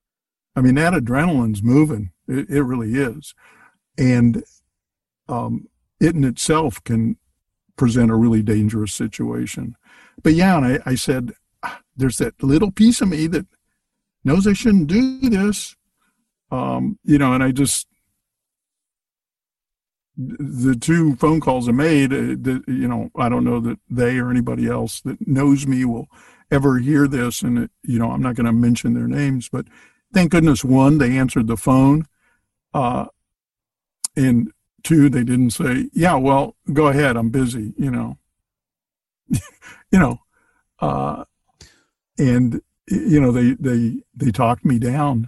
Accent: American